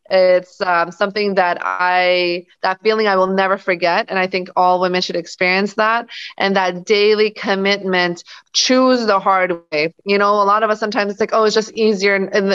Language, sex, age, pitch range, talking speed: English, female, 30-49, 180-210 Hz, 200 wpm